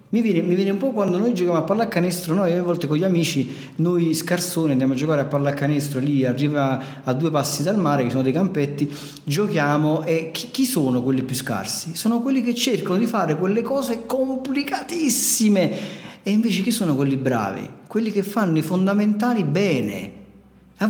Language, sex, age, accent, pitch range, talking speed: Italian, male, 40-59, native, 135-200 Hz, 185 wpm